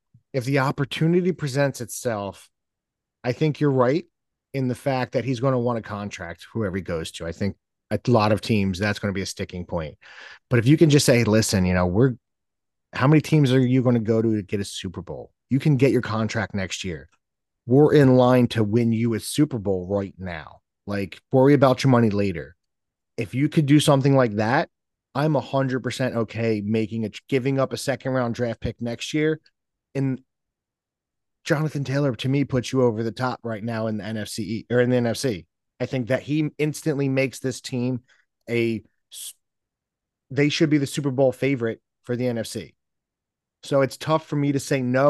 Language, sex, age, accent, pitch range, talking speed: English, male, 30-49, American, 110-135 Hz, 200 wpm